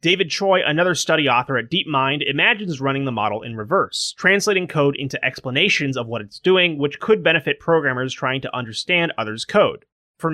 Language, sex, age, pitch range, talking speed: English, male, 30-49, 130-175 Hz, 180 wpm